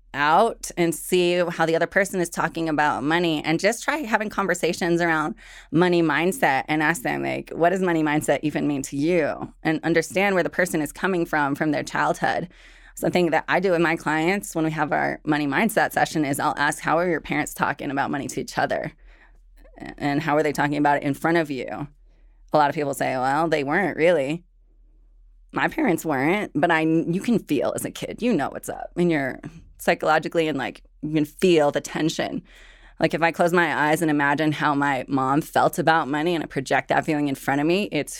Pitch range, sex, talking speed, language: 145-170 Hz, female, 215 wpm, English